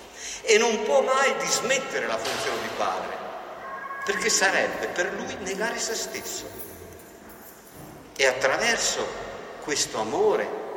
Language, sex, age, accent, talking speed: Italian, male, 50-69, native, 110 wpm